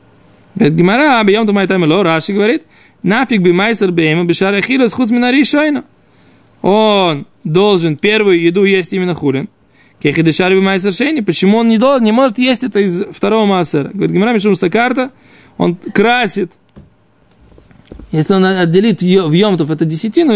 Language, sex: Russian, male